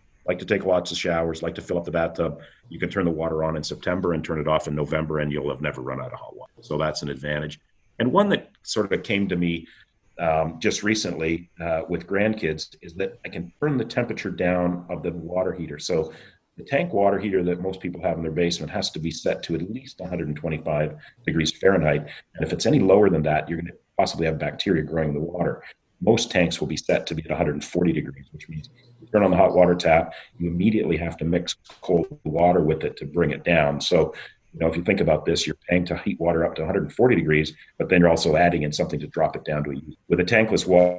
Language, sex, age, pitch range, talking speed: English, male, 40-59, 75-90 Hz, 245 wpm